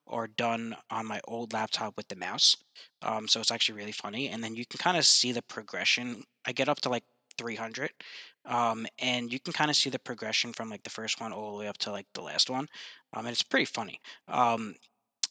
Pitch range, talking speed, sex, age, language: 110-135 Hz, 230 wpm, male, 20-39, English